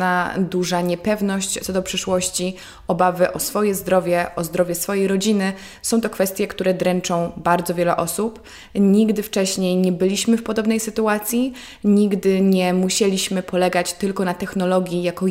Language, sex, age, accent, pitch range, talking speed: Polish, female, 20-39, native, 175-195 Hz, 145 wpm